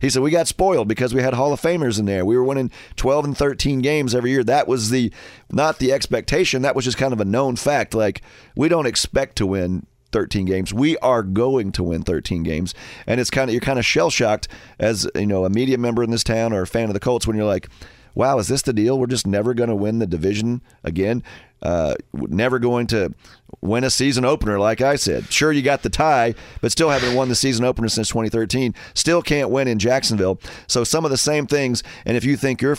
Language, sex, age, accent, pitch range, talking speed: English, male, 40-59, American, 100-130 Hz, 245 wpm